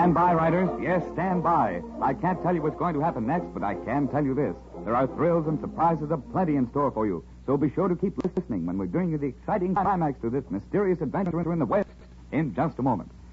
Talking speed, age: 250 wpm, 60-79